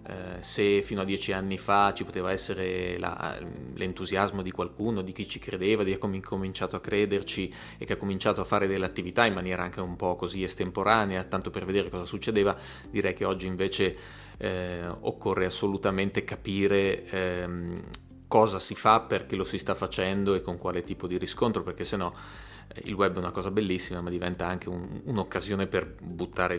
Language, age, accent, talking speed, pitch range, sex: Italian, 30-49, native, 185 wpm, 90-110 Hz, male